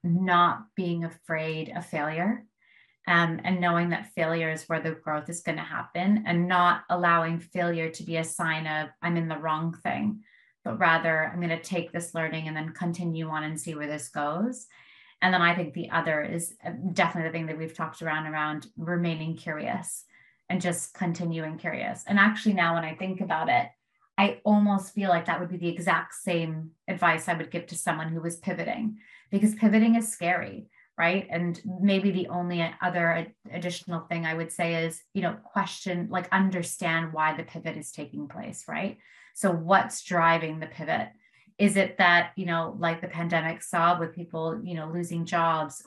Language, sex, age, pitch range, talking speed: English, female, 30-49, 165-190 Hz, 185 wpm